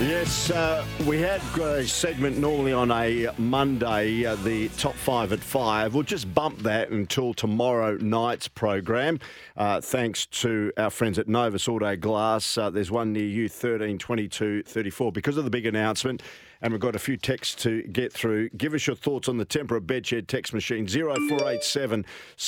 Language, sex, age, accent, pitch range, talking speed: English, male, 50-69, Australian, 110-135 Hz, 175 wpm